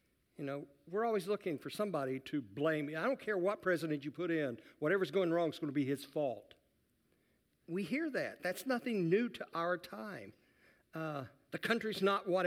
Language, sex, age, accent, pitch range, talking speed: English, male, 60-79, American, 140-195 Hz, 195 wpm